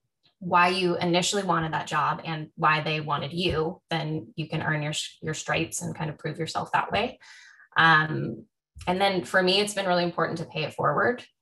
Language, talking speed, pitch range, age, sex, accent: English, 200 wpm, 150-175 Hz, 10-29, female, American